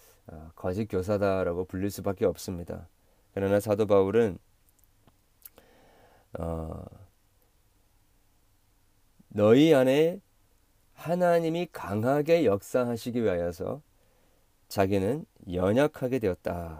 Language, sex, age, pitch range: Korean, male, 40-59, 95-115 Hz